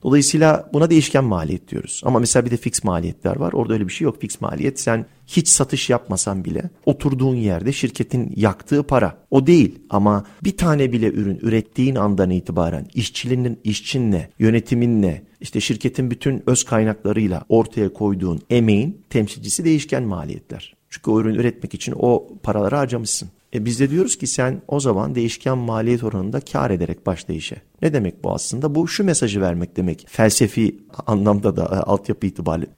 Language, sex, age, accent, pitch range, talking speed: Turkish, male, 50-69, native, 100-140 Hz, 165 wpm